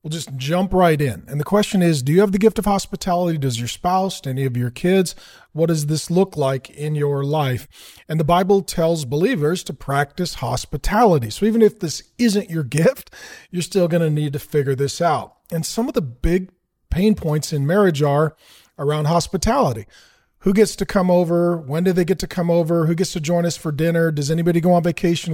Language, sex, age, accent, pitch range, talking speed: English, male, 40-59, American, 150-180 Hz, 215 wpm